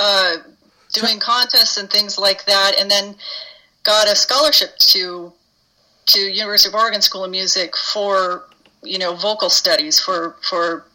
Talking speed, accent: 150 wpm, American